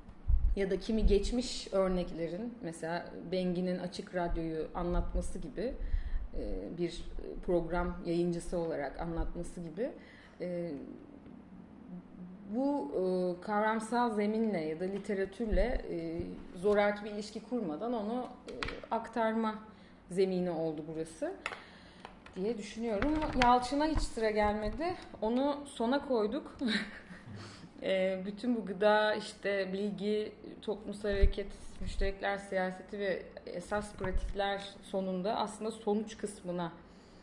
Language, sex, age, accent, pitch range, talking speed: Turkish, female, 30-49, native, 180-220 Hz, 90 wpm